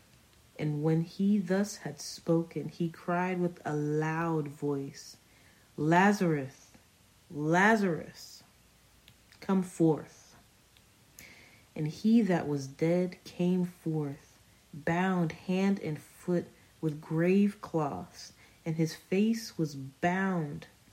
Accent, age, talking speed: American, 40-59, 100 wpm